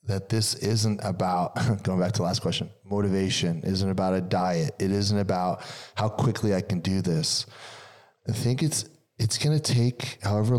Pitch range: 100-125 Hz